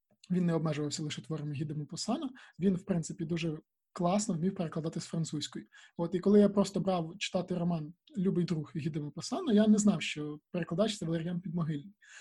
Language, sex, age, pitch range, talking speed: Ukrainian, male, 20-39, 160-195 Hz, 180 wpm